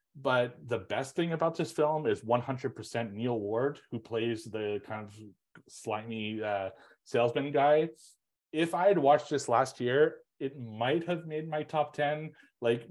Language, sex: English, male